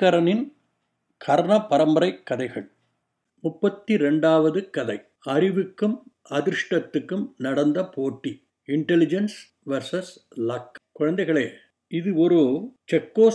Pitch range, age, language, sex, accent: 150-210 Hz, 50-69, Tamil, male, native